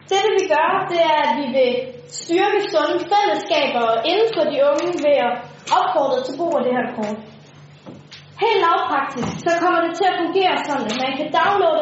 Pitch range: 275-350 Hz